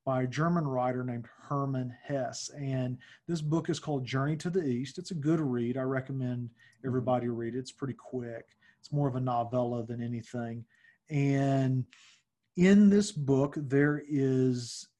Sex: male